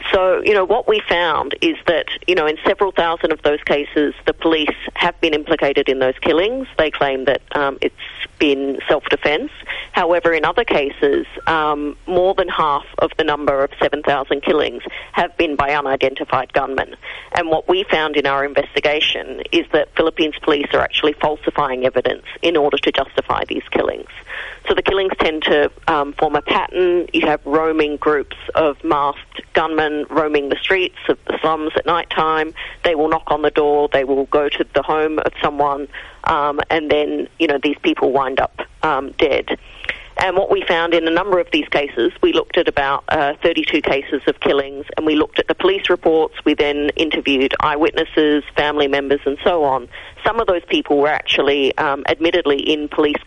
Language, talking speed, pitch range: English, 185 wpm, 145-180 Hz